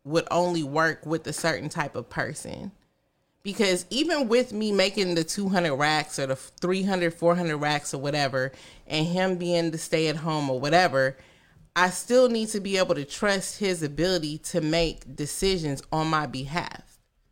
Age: 30-49